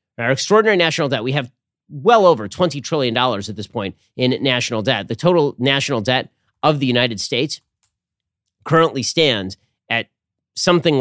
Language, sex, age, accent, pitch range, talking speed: English, male, 30-49, American, 115-160 Hz, 155 wpm